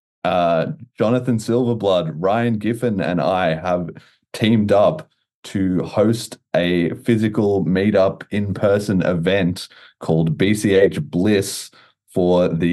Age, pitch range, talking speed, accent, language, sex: 30-49, 90-105 Hz, 105 wpm, Australian, English, male